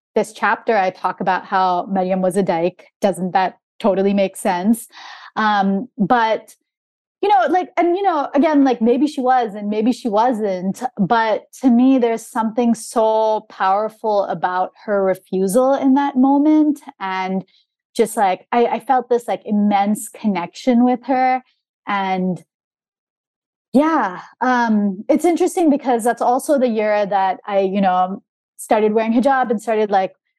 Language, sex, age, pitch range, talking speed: English, female, 20-39, 190-250 Hz, 150 wpm